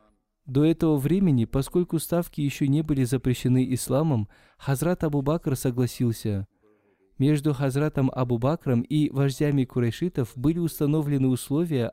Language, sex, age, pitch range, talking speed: Russian, male, 20-39, 125-150 Hz, 110 wpm